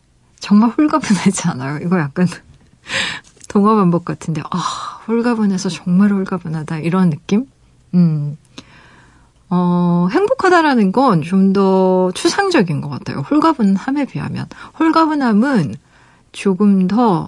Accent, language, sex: native, Korean, female